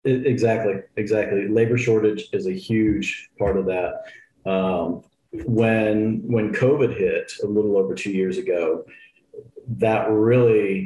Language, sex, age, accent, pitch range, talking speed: English, male, 40-59, American, 95-120 Hz, 125 wpm